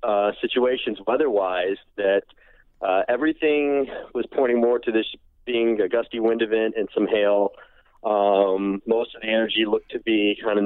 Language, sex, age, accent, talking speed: English, male, 30-49, American, 165 wpm